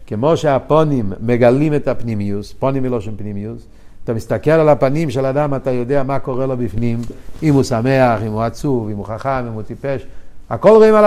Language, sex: Hebrew, male